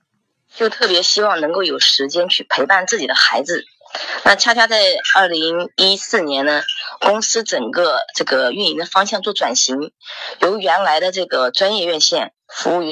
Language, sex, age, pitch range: Chinese, female, 20-39, 160-250 Hz